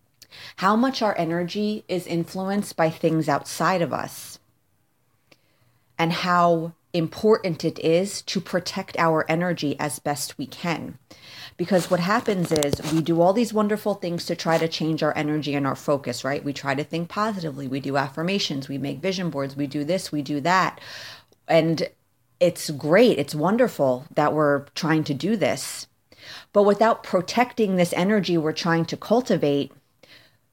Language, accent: English, American